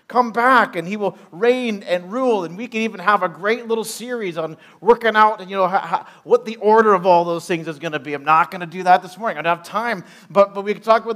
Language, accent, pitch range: English, American, 175-240 Hz